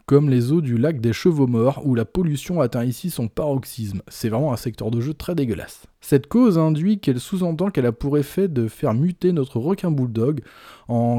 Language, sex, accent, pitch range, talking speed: French, male, French, 120-165 Hz, 210 wpm